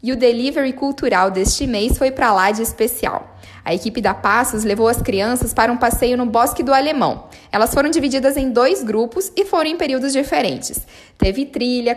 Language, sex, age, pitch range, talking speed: Portuguese, female, 10-29, 220-280 Hz, 190 wpm